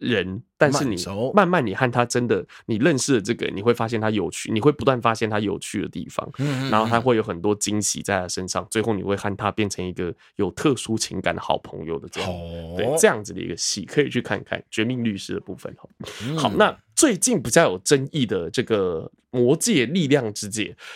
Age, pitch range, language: 20-39, 110-160 Hz, Chinese